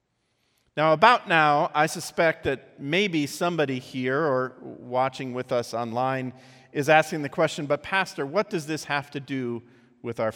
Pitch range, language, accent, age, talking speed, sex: 130-165 Hz, English, American, 40-59, 160 wpm, male